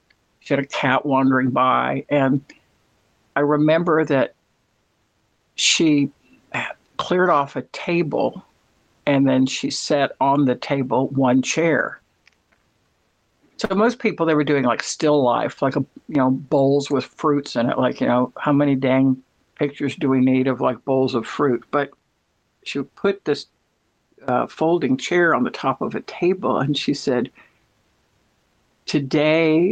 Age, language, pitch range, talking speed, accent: 60-79, English, 135-160 Hz, 145 wpm, American